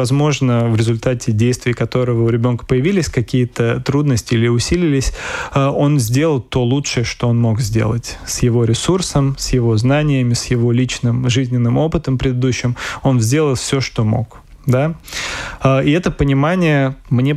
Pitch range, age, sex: 120-140 Hz, 20-39, male